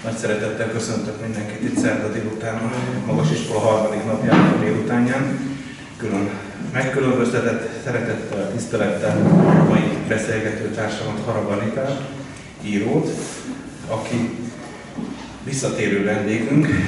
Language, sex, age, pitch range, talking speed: Hungarian, male, 30-49, 110-130 Hz, 90 wpm